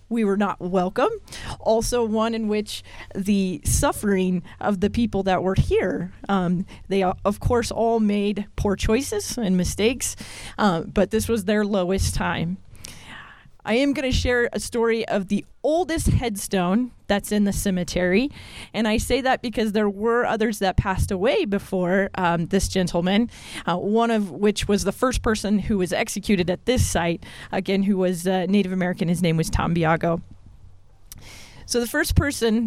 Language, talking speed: English, 165 wpm